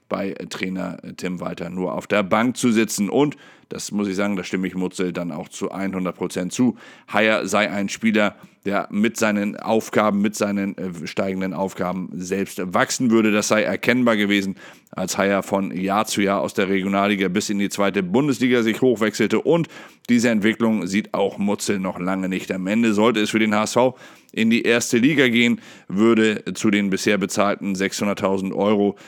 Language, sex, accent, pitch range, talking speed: German, male, German, 95-110 Hz, 180 wpm